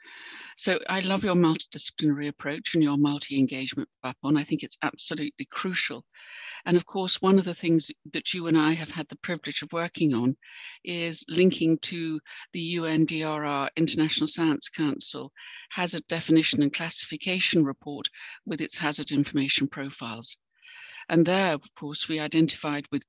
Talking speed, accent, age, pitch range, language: 150 wpm, British, 60-79, 145-175 Hz, English